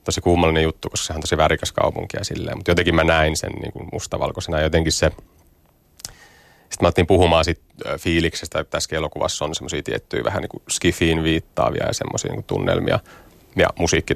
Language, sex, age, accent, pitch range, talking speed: Finnish, male, 30-49, native, 80-90 Hz, 170 wpm